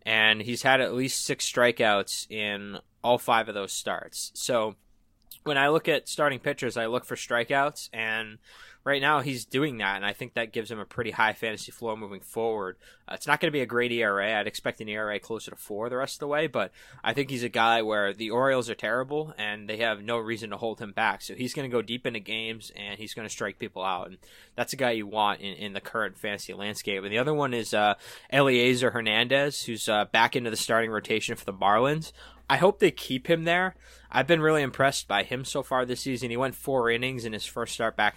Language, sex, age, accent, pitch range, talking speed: English, male, 20-39, American, 105-130 Hz, 240 wpm